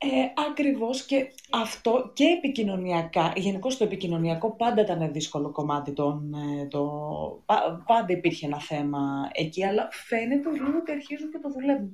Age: 30-49